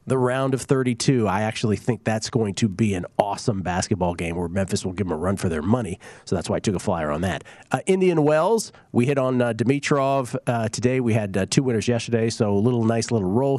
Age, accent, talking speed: 40-59, American, 245 wpm